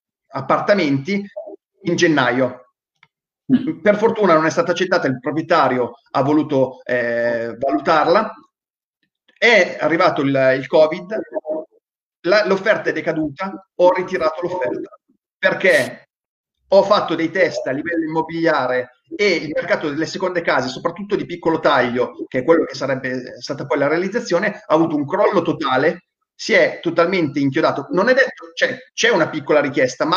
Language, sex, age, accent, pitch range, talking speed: Italian, male, 30-49, native, 135-205 Hz, 145 wpm